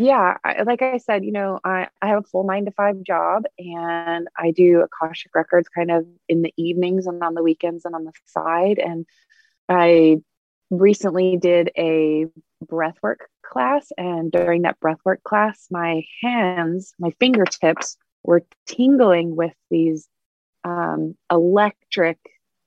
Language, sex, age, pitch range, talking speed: English, female, 20-39, 165-190 Hz, 150 wpm